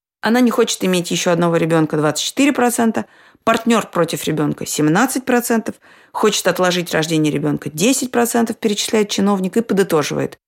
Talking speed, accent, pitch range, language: 120 wpm, native, 165-225 Hz, Russian